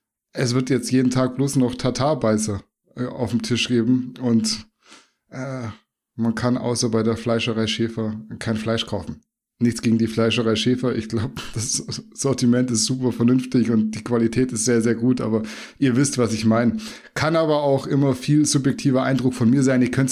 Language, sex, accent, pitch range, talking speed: German, male, German, 115-135 Hz, 180 wpm